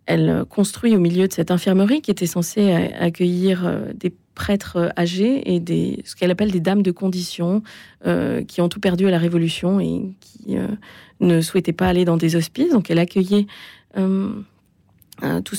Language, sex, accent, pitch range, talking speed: French, female, French, 170-205 Hz, 175 wpm